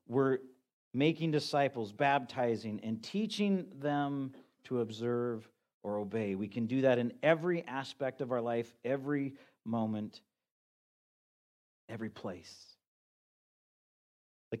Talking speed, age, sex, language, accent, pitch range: 105 wpm, 40-59, male, English, American, 140-210 Hz